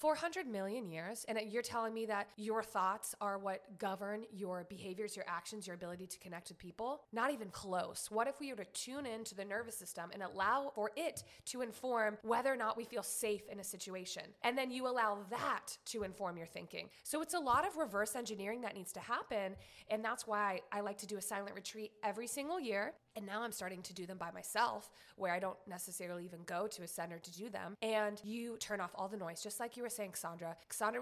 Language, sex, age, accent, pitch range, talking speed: English, female, 20-39, American, 190-240 Hz, 230 wpm